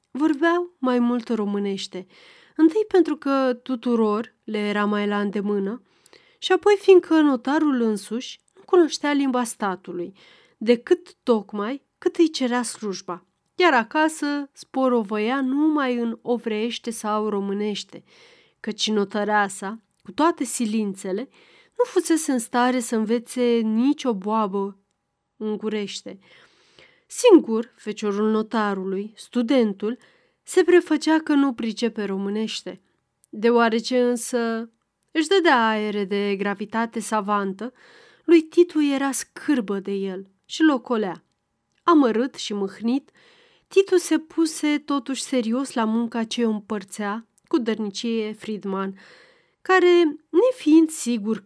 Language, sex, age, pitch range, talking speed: Romanian, female, 30-49, 210-310 Hz, 110 wpm